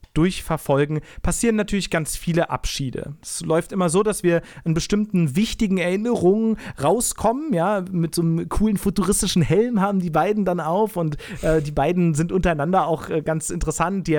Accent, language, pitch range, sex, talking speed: German, German, 155-185 Hz, male, 170 wpm